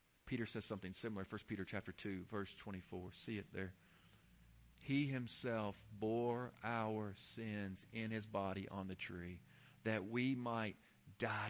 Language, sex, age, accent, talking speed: English, male, 40-59, American, 145 wpm